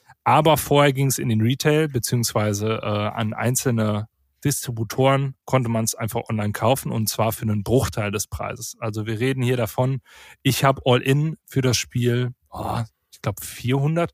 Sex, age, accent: male, 30-49, German